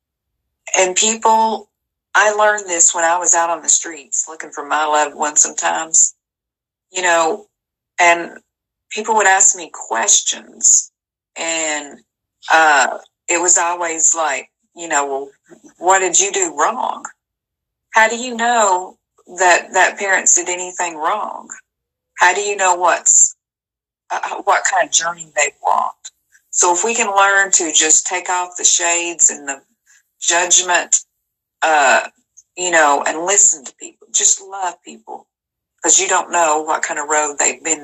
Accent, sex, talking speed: American, female, 150 wpm